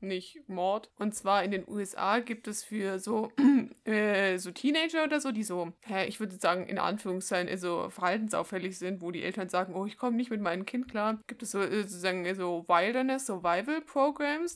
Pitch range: 195-240 Hz